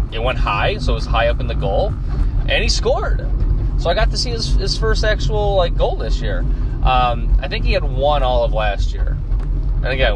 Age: 30-49